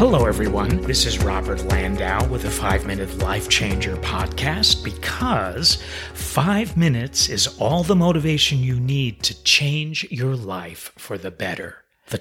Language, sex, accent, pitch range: English, male, American, 105-155 Hz